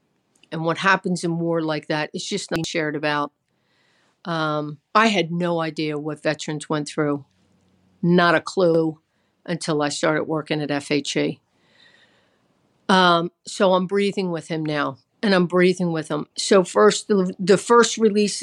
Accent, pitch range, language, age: American, 160-190 Hz, English, 50-69